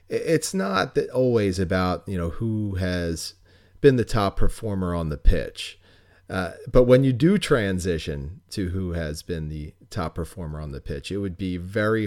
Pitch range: 85-120 Hz